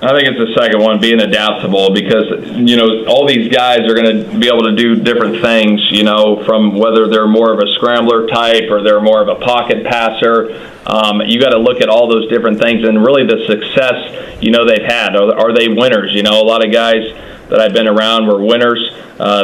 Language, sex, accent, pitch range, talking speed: English, male, American, 105-115 Hz, 230 wpm